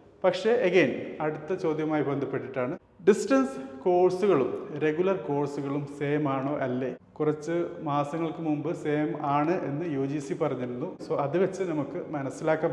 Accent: native